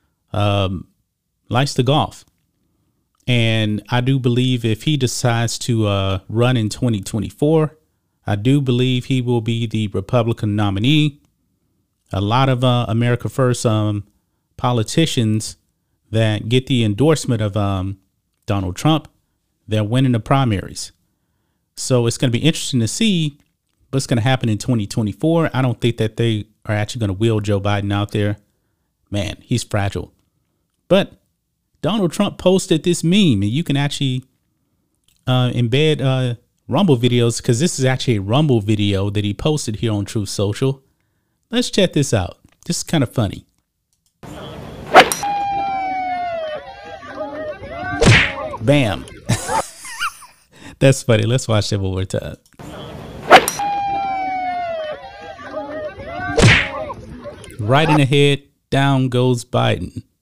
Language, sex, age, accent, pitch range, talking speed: English, male, 30-49, American, 105-145 Hz, 130 wpm